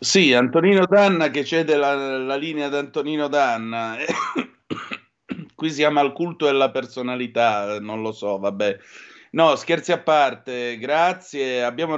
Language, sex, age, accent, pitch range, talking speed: Italian, male, 30-49, native, 115-145 Hz, 145 wpm